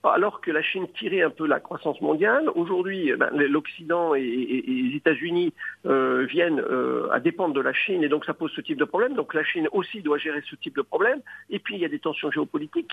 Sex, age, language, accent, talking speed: male, 50-69, English, French, 220 wpm